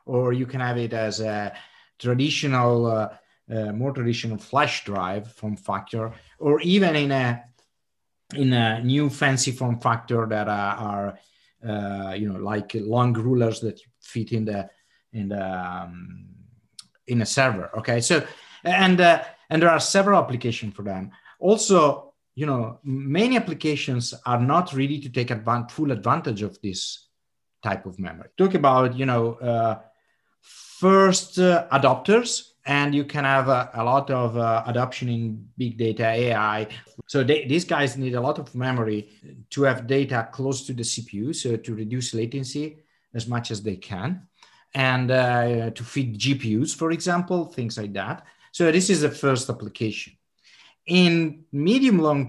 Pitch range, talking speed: 115-145 Hz, 160 wpm